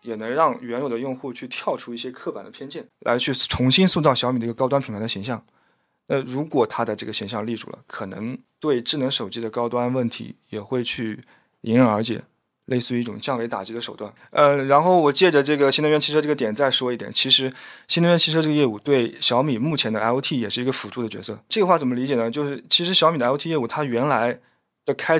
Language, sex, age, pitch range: Chinese, male, 20-39, 115-140 Hz